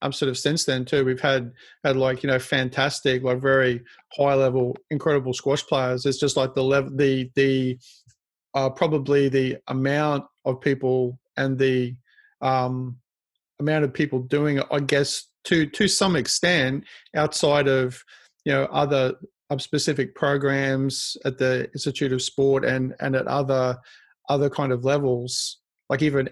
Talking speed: 155 wpm